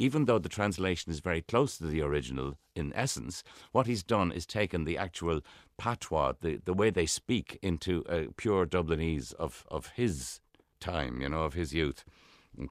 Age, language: 60-79, English